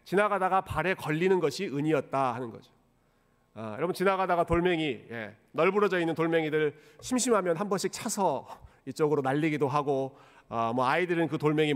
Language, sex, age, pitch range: Korean, male, 40-59, 140-215 Hz